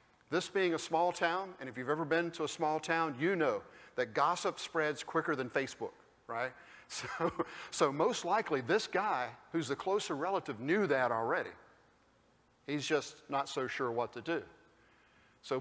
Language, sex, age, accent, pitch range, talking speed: English, male, 50-69, American, 135-165 Hz, 175 wpm